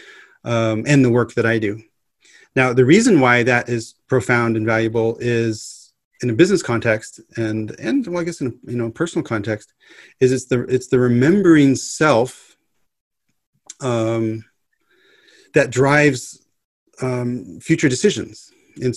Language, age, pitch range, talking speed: English, 30-49, 110-125 Hz, 140 wpm